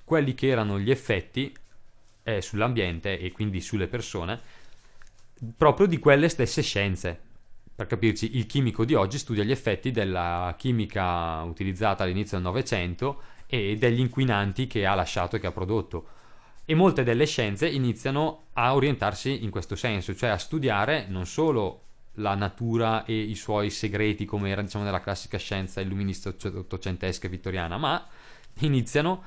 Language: Italian